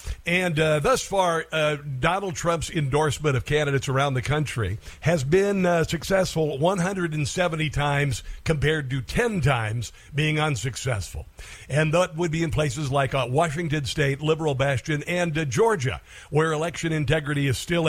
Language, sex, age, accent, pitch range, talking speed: English, male, 50-69, American, 140-170 Hz, 150 wpm